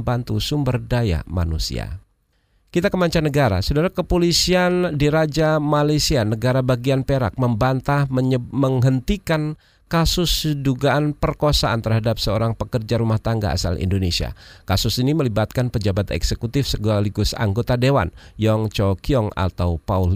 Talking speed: 120 wpm